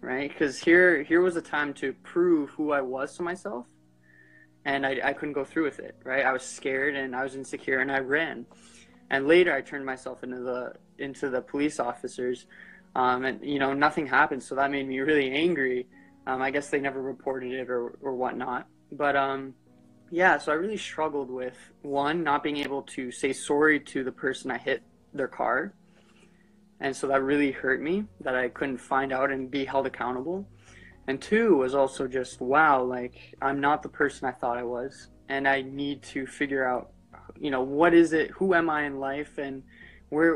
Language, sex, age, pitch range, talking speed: Telugu, male, 20-39, 130-145 Hz, 205 wpm